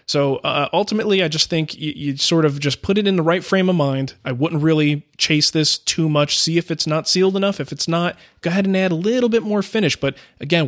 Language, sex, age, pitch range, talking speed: English, male, 20-39, 130-165 Hz, 255 wpm